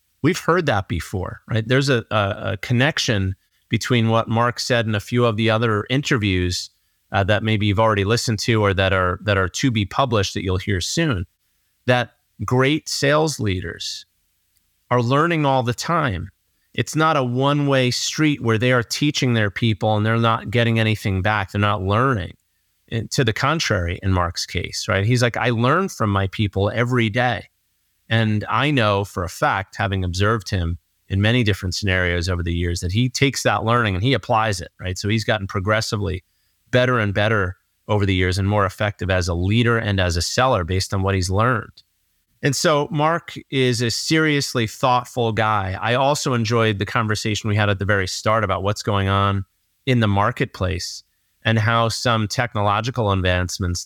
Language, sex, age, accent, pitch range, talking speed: English, male, 30-49, American, 95-125 Hz, 185 wpm